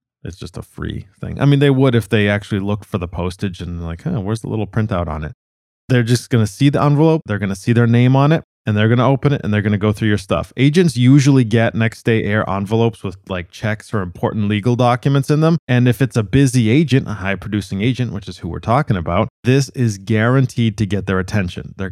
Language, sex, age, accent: English, male, 20-39, American